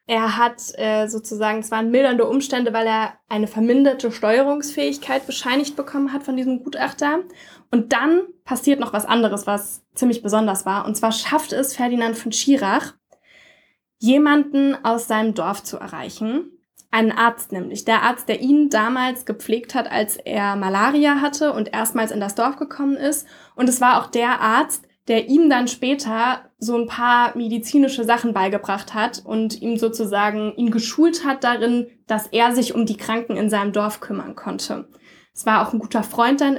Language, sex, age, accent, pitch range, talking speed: German, female, 10-29, German, 220-260 Hz, 170 wpm